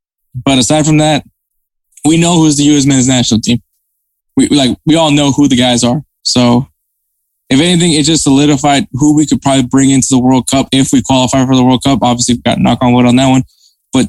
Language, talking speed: English, 220 wpm